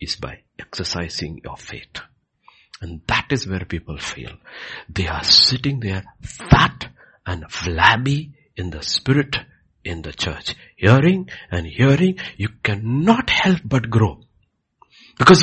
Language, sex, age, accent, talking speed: English, male, 60-79, Indian, 130 wpm